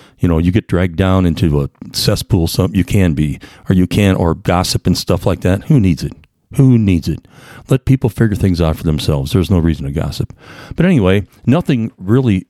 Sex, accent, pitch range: male, American, 85-115 Hz